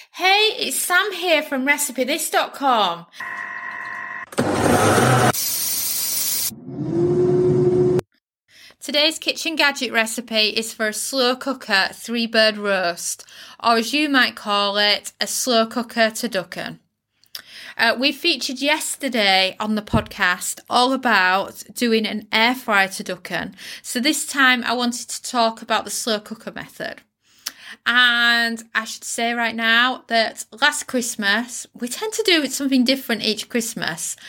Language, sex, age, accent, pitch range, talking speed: English, female, 20-39, British, 215-260 Hz, 130 wpm